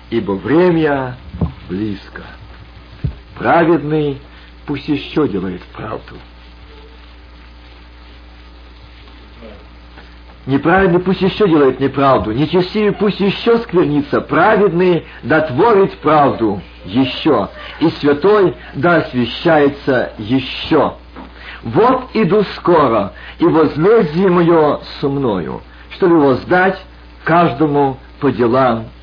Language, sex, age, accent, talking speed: Russian, male, 50-69, native, 85 wpm